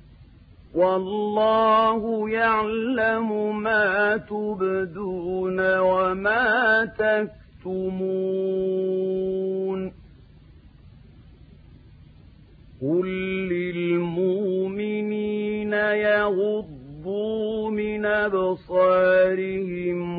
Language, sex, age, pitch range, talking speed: Arabic, male, 50-69, 170-210 Hz, 35 wpm